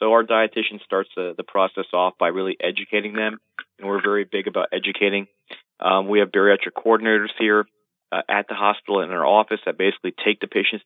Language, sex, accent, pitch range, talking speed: English, male, American, 95-110 Hz, 200 wpm